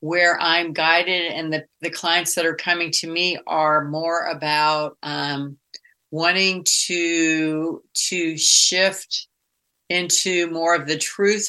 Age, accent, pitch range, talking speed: 50-69, American, 155-180 Hz, 130 wpm